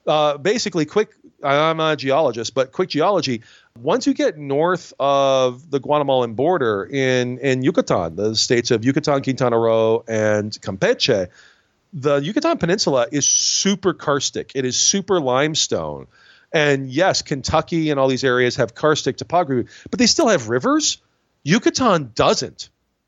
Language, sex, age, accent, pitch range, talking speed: English, male, 40-59, American, 125-180 Hz, 150 wpm